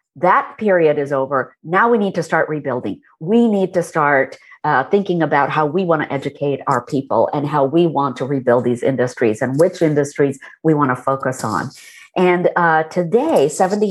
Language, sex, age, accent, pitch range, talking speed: English, female, 50-69, American, 150-230 Hz, 190 wpm